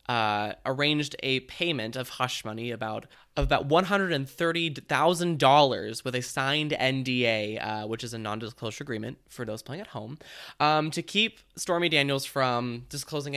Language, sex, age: English, male, 20-39